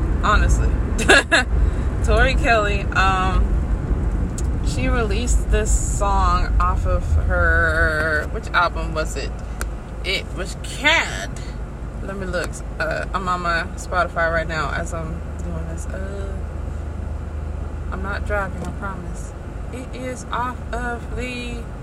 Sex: female